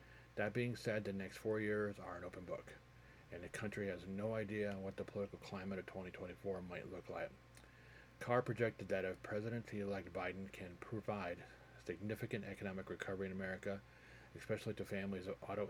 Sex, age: male, 40-59